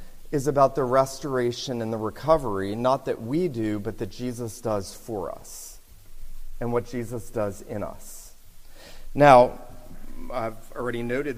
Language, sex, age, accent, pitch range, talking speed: English, male, 40-59, American, 120-160 Hz, 140 wpm